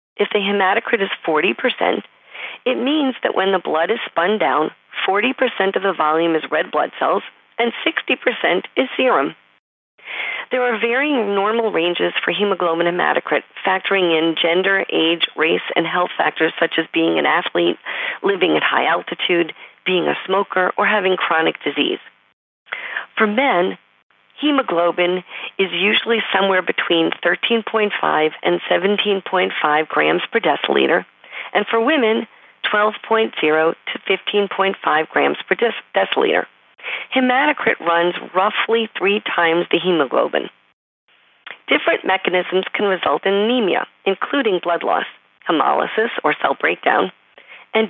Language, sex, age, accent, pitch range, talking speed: English, female, 40-59, American, 175-225 Hz, 125 wpm